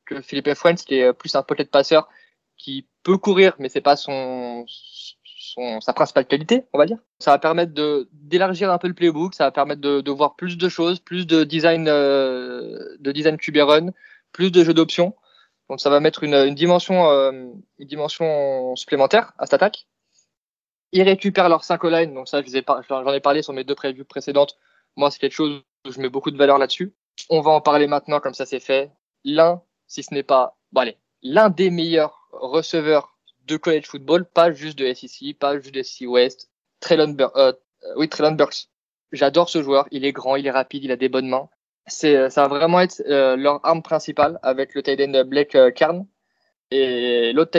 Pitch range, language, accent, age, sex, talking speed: 135-170 Hz, French, French, 20-39, male, 200 wpm